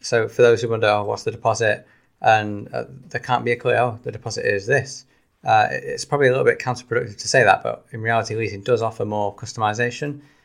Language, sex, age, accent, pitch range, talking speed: English, male, 20-39, British, 105-125 Hz, 225 wpm